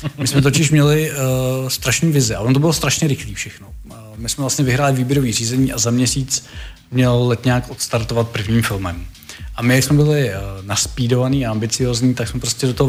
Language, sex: Czech, male